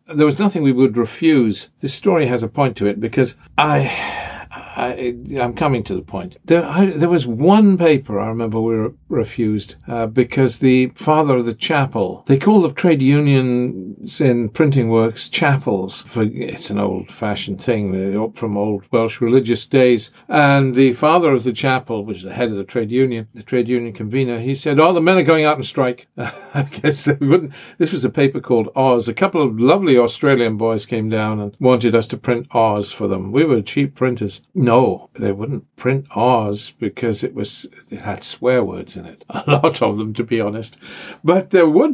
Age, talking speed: 50-69, 205 wpm